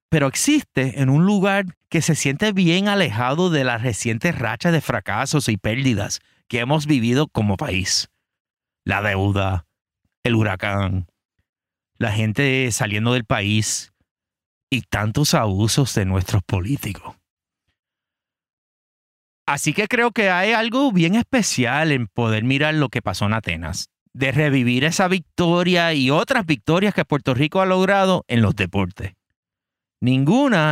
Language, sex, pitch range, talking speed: English, male, 105-165 Hz, 135 wpm